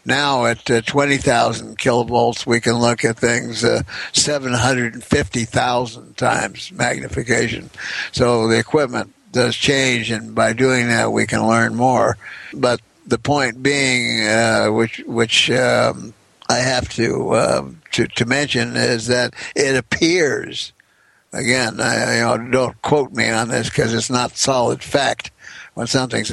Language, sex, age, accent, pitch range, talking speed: English, male, 60-79, American, 115-135 Hz, 150 wpm